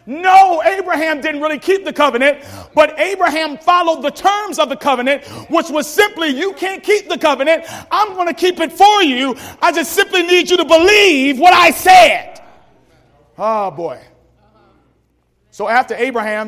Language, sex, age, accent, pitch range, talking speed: English, male, 40-59, American, 190-295 Hz, 165 wpm